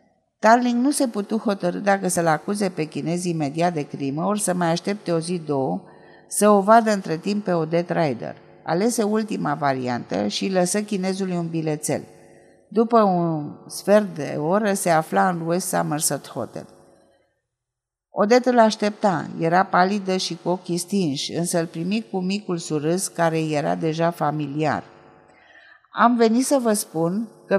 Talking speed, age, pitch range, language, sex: 155 wpm, 50-69, 160-210 Hz, Romanian, female